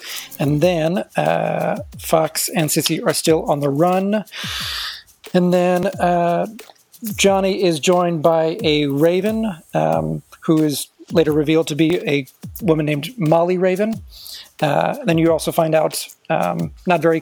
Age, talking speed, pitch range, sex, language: 40-59, 145 wpm, 155-170 Hz, male, English